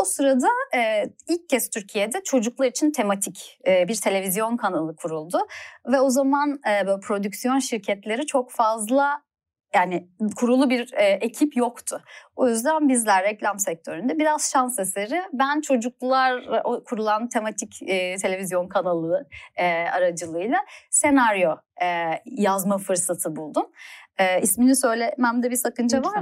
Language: Turkish